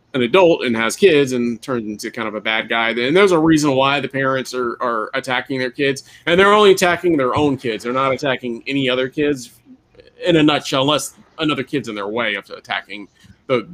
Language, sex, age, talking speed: English, male, 30-49, 220 wpm